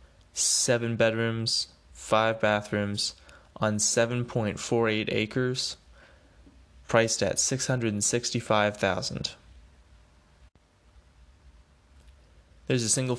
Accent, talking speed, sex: American, 60 wpm, male